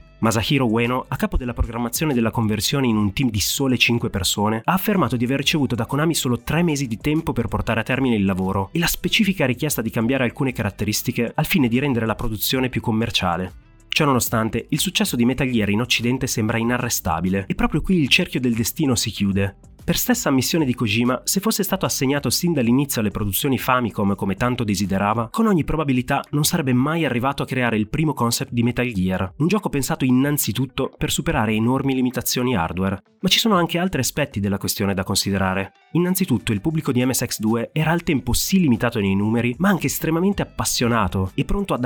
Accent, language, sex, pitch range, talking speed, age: native, Italian, male, 105-145 Hz, 200 wpm, 30-49